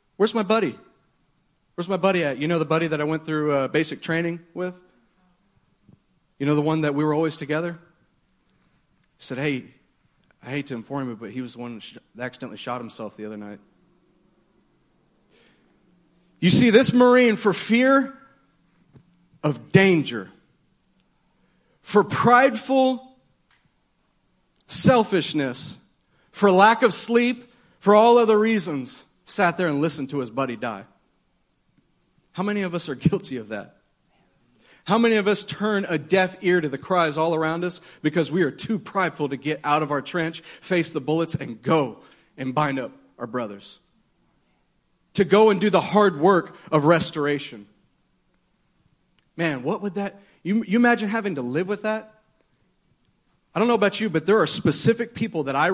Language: English